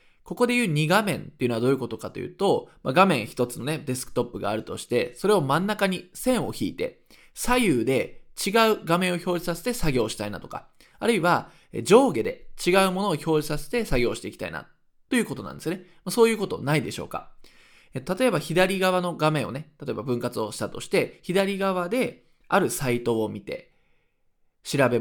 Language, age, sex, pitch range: Japanese, 20-39, male, 125-200 Hz